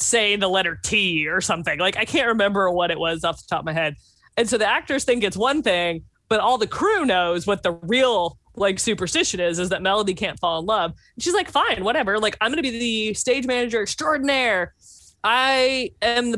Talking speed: 225 wpm